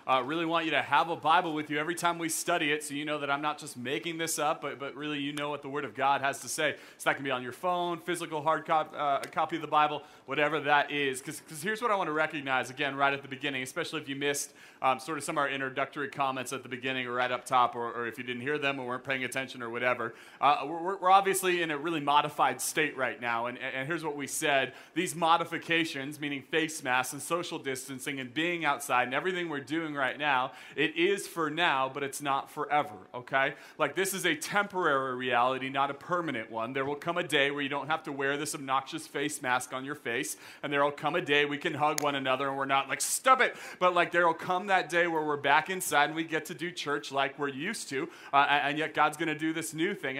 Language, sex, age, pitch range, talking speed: English, male, 30-49, 135-165 Hz, 260 wpm